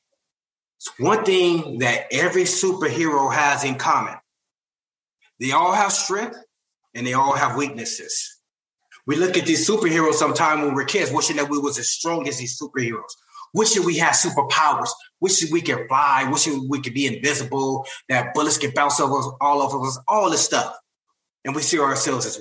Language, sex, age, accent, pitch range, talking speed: English, male, 30-49, American, 125-160 Hz, 180 wpm